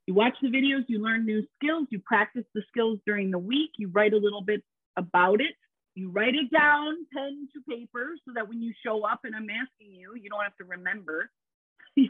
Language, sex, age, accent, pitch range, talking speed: English, female, 40-59, American, 215-290 Hz, 225 wpm